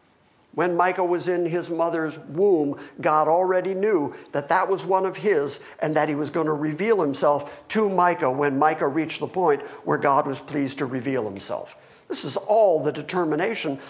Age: 50-69